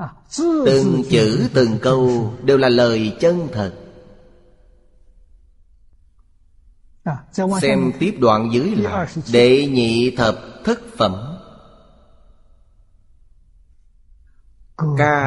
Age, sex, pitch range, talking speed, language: 30-49, male, 95-135 Hz, 80 wpm, Vietnamese